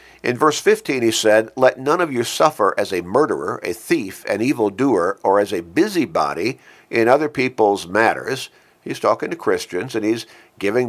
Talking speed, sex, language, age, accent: 175 wpm, male, English, 50-69, American